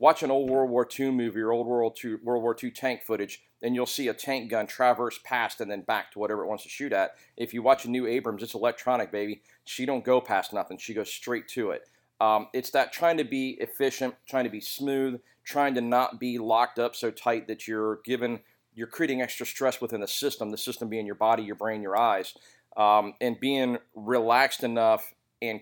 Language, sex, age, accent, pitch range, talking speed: English, male, 40-59, American, 110-125 Hz, 225 wpm